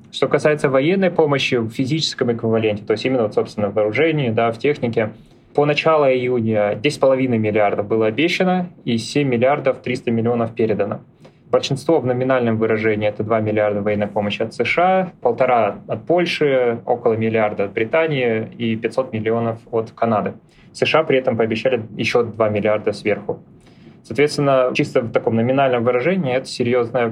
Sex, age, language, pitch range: male, 20-39, Russian, 110-135 Hz